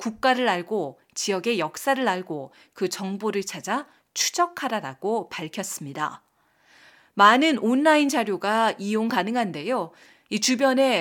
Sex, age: female, 40-59